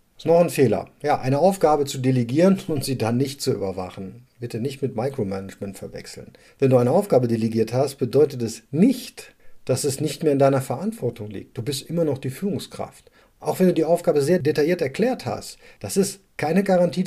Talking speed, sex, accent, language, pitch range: 195 wpm, male, German, German, 120-170 Hz